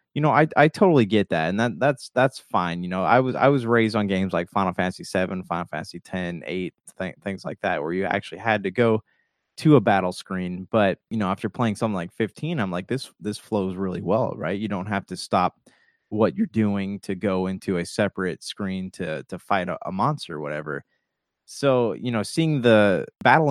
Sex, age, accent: male, 20-39, American